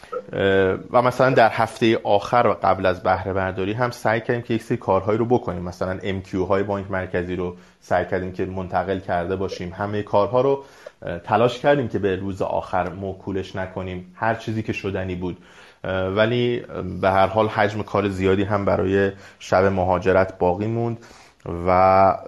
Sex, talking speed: male, 160 wpm